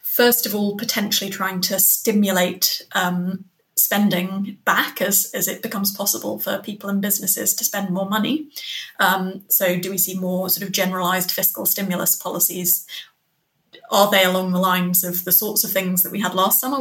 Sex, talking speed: female, 180 wpm